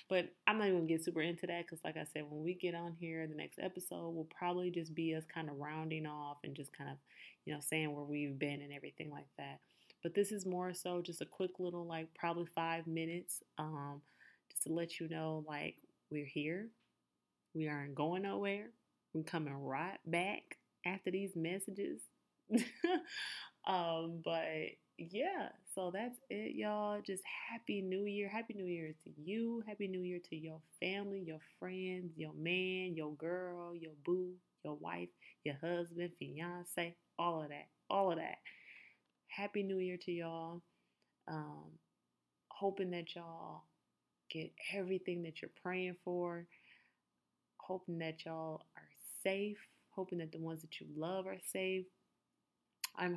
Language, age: English, 20-39